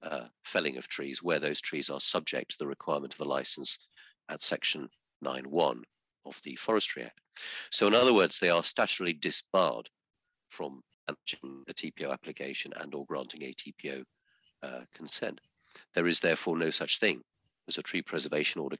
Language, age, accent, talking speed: English, 50-69, British, 165 wpm